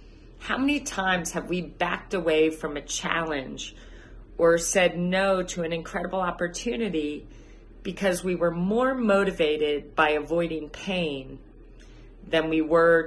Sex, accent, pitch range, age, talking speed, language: female, American, 150-180 Hz, 40-59, 130 wpm, English